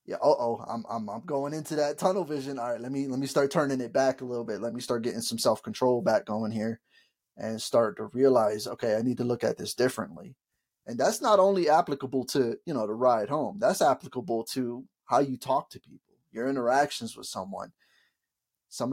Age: 20-39